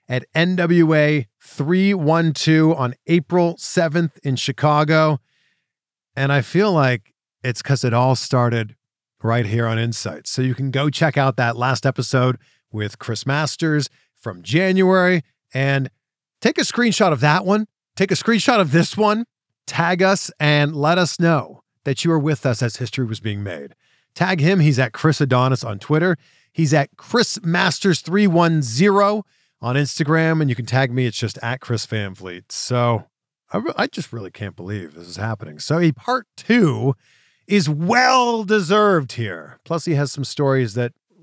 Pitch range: 120-170 Hz